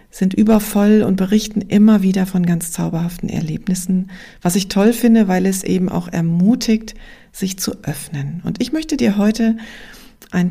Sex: female